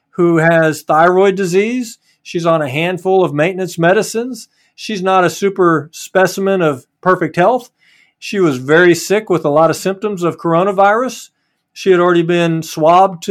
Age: 50-69